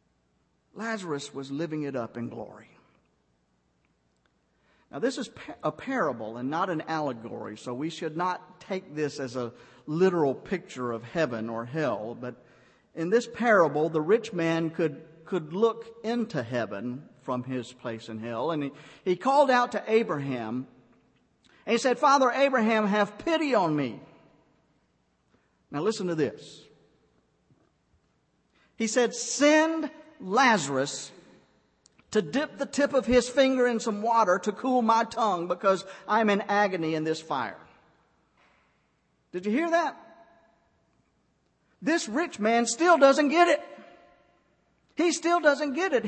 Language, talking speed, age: English, 140 wpm, 50-69